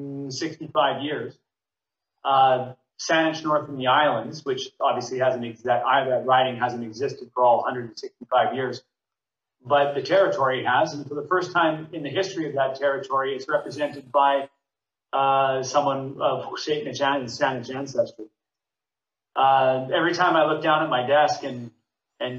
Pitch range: 130-160 Hz